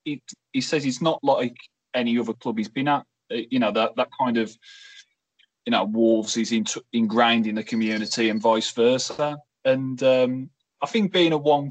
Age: 20-39